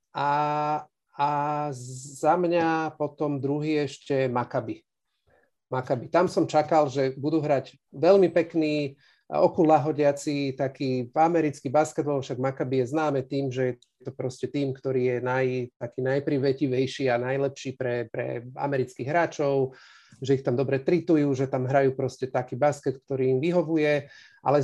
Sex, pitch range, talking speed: male, 130-150 Hz, 140 wpm